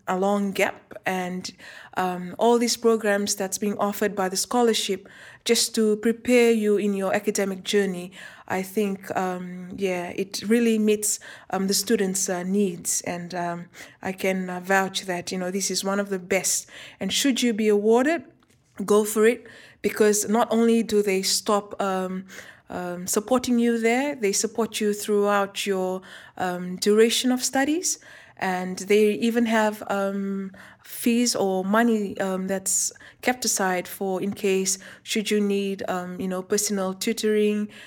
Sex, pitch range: female, 185-215 Hz